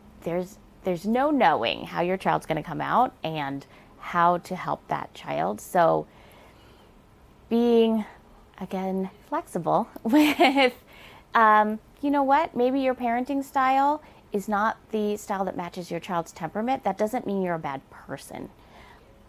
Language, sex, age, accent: English, female, 30-49, American